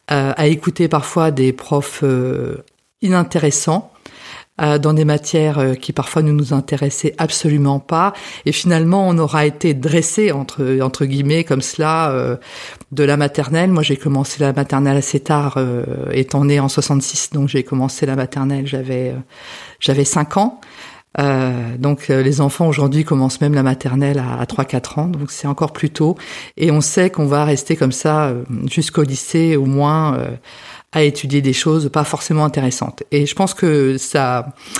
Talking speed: 175 wpm